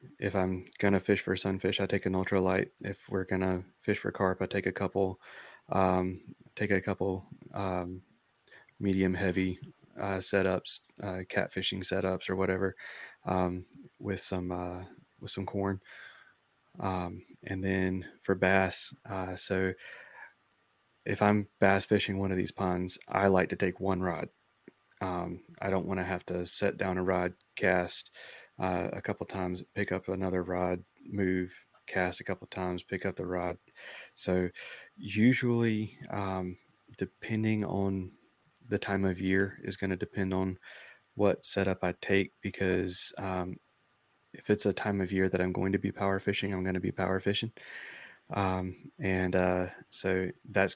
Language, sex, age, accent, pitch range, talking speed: English, male, 20-39, American, 90-100 Hz, 160 wpm